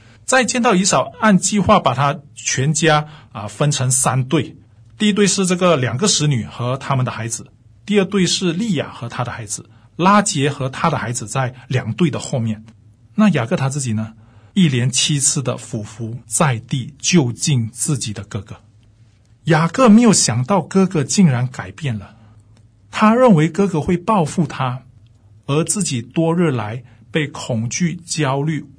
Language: Chinese